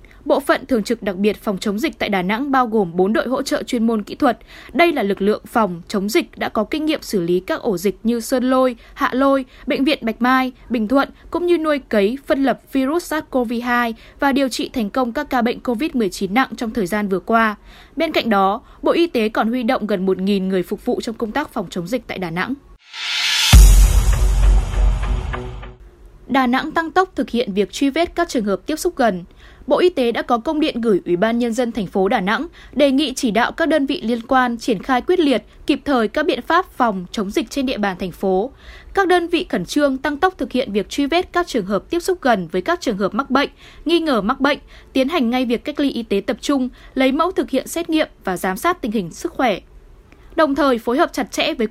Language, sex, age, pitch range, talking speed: Vietnamese, female, 10-29, 220-295 Hz, 245 wpm